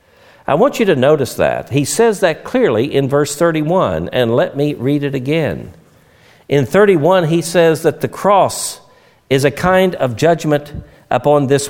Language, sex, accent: English, male, American